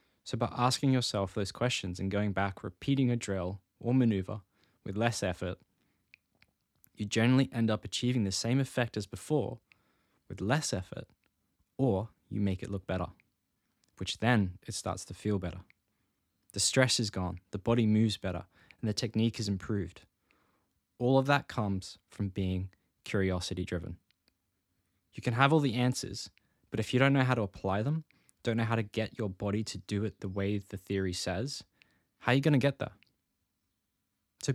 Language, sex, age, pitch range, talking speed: English, male, 10-29, 95-125 Hz, 175 wpm